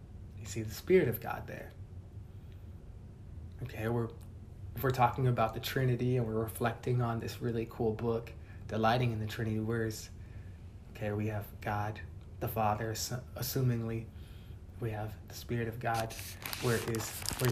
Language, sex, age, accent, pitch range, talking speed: English, male, 20-39, American, 100-120 Hz, 160 wpm